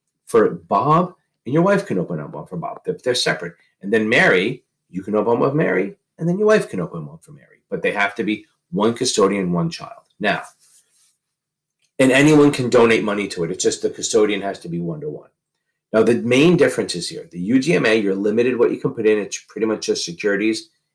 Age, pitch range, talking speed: 40-59, 100-155 Hz, 220 wpm